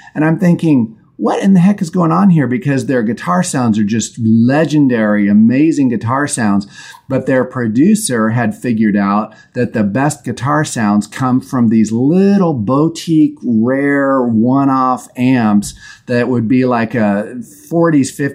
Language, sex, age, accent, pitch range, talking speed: English, male, 40-59, American, 110-140 Hz, 155 wpm